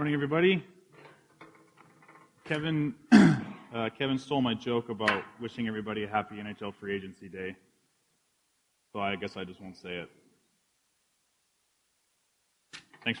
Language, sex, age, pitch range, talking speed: English, male, 20-39, 125-165 Hz, 120 wpm